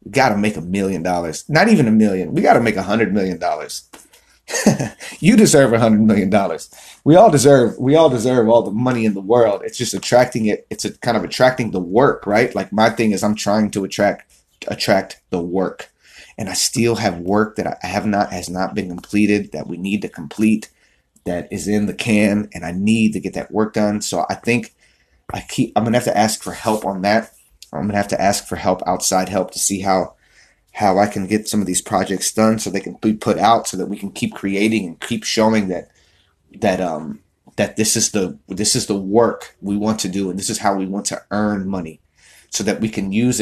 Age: 30-49